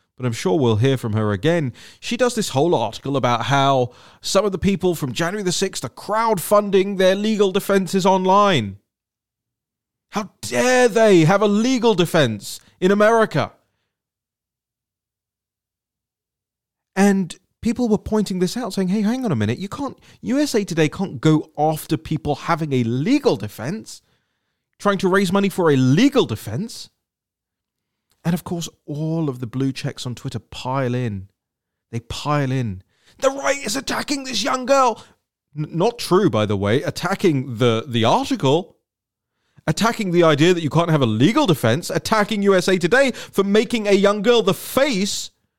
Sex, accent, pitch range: male, British, 125-205 Hz